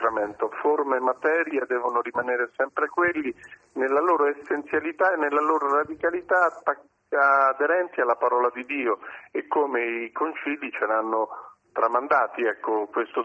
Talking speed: 125 wpm